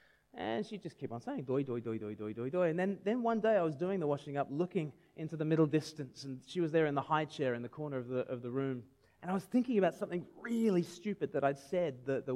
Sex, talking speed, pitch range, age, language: male, 280 wpm, 130-175 Hz, 30-49, English